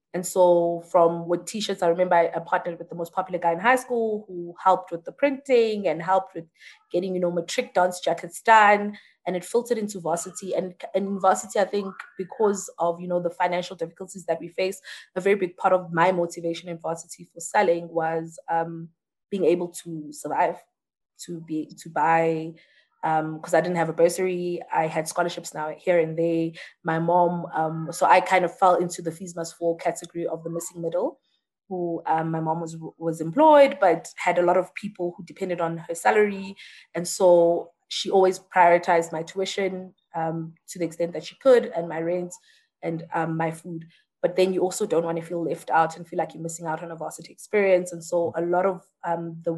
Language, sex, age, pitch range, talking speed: English, female, 20-39, 165-185 Hz, 205 wpm